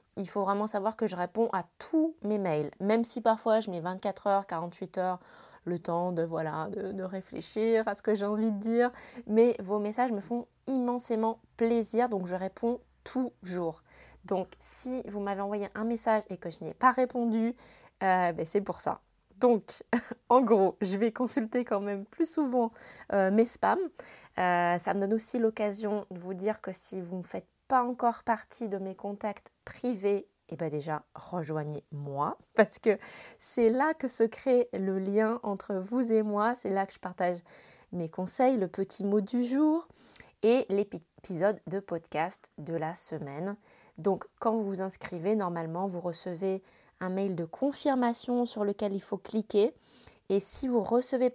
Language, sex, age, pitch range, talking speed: French, female, 20-39, 185-230 Hz, 180 wpm